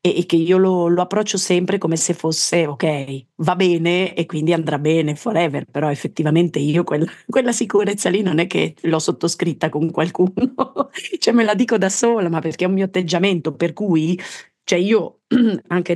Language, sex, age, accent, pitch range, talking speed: Italian, female, 40-59, native, 160-190 Hz, 180 wpm